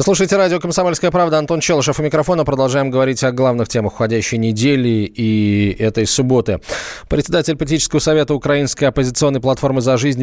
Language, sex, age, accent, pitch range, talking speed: Russian, male, 20-39, native, 110-135 Hz, 155 wpm